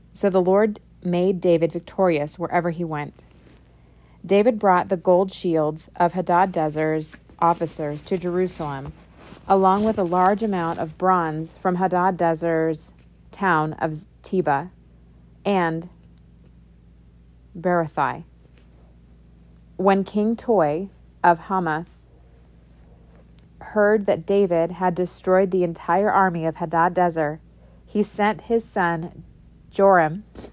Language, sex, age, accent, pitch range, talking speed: English, female, 30-49, American, 155-190 Hz, 110 wpm